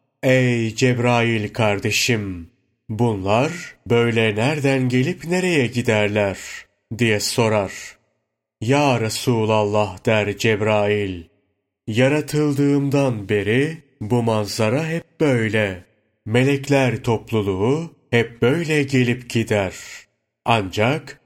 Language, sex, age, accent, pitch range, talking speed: Turkish, male, 30-49, native, 110-135 Hz, 80 wpm